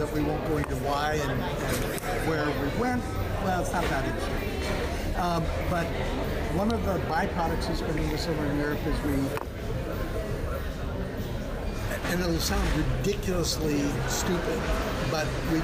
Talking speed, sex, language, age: 140 wpm, male, English, 50-69